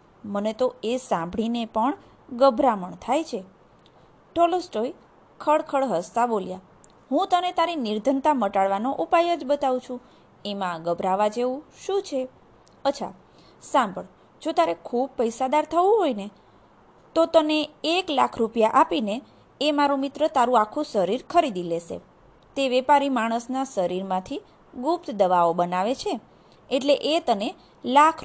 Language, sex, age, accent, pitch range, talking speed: Gujarati, female, 20-39, native, 225-310 Hz, 125 wpm